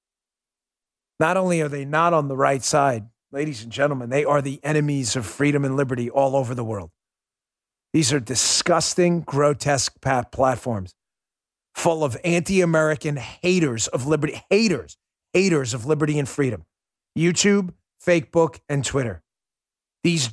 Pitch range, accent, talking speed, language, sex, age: 135-175 Hz, American, 140 wpm, English, male, 40-59